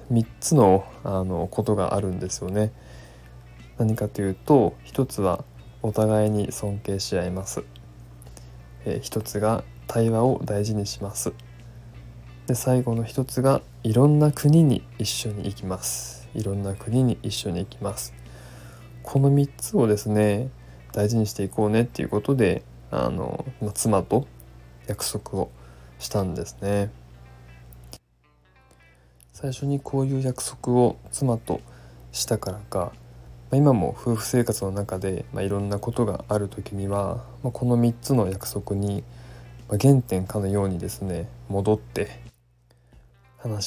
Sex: male